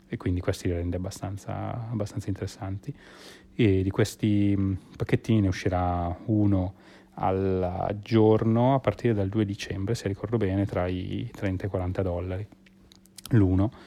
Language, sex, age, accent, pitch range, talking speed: Italian, male, 30-49, native, 90-105 Hz, 145 wpm